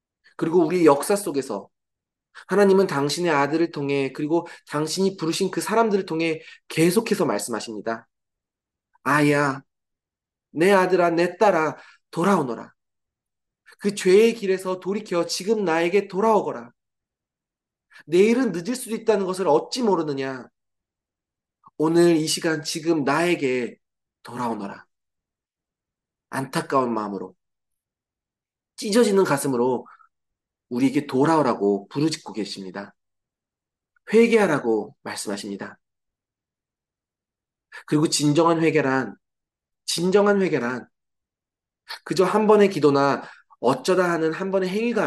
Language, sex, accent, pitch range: Korean, male, native, 125-190 Hz